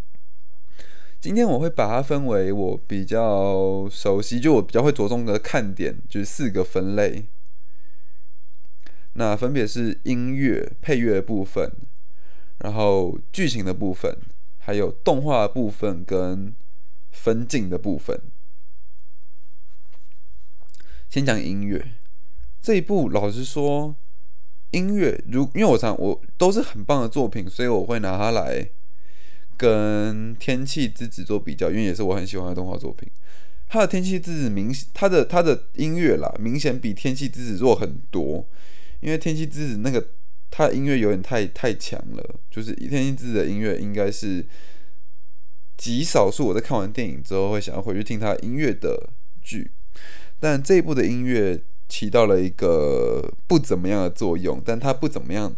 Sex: male